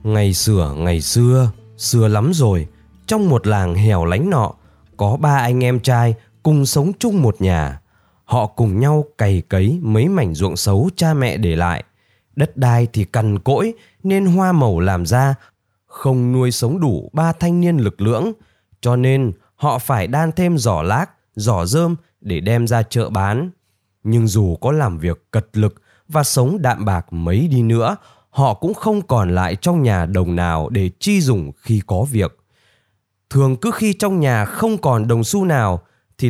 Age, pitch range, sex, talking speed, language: 20-39, 100-145 Hz, male, 180 wpm, Vietnamese